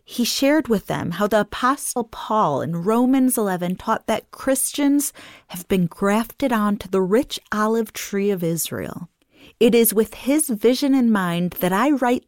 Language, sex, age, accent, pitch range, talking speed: English, female, 30-49, American, 200-250 Hz, 165 wpm